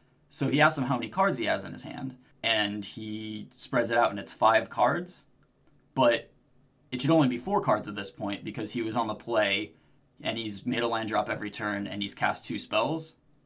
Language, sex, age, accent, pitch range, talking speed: English, male, 20-39, American, 110-140 Hz, 225 wpm